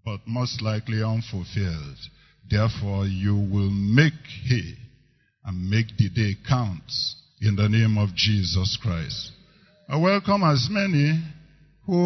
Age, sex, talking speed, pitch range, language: 50-69, male, 125 wpm, 105-140 Hz, English